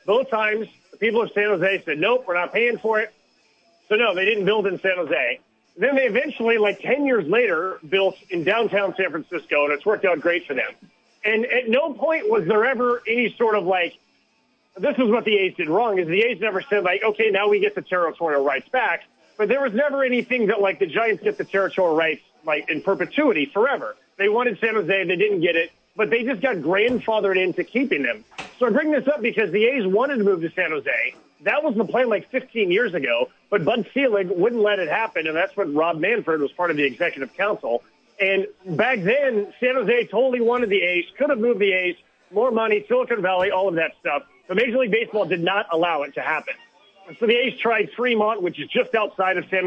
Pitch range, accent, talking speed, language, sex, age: 185-245 Hz, American, 230 wpm, English, male, 30-49